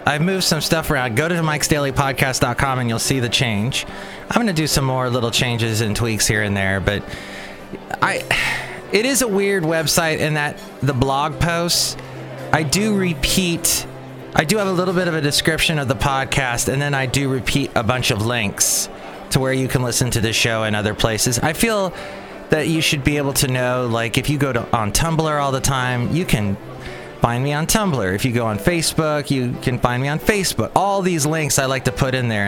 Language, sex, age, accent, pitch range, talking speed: English, male, 30-49, American, 110-150 Hz, 220 wpm